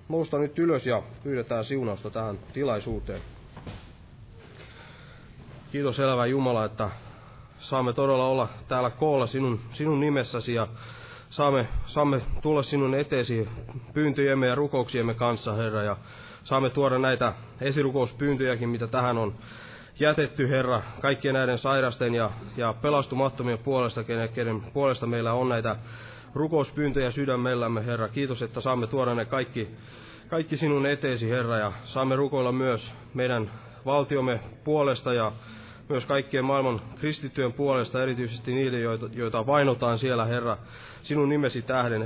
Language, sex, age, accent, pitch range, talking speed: Finnish, male, 20-39, native, 115-135 Hz, 125 wpm